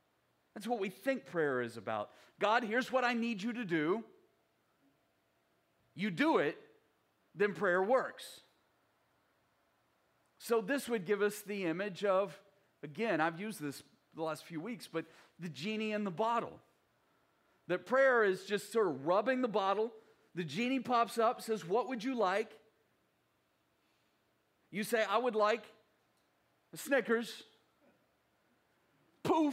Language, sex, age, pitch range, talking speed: English, male, 40-59, 190-255 Hz, 140 wpm